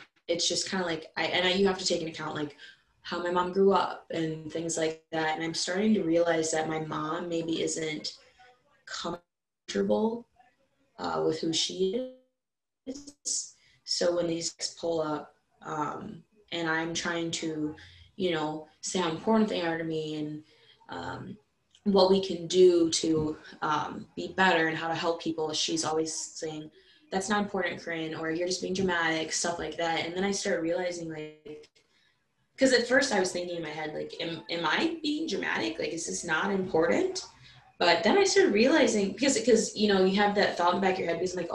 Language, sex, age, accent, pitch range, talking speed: English, female, 20-39, American, 160-195 Hz, 195 wpm